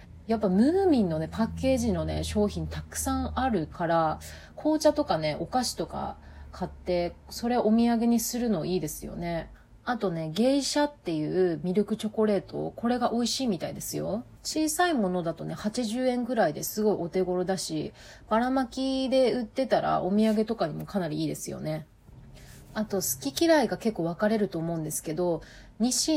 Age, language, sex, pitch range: 30-49, Japanese, female, 160-240 Hz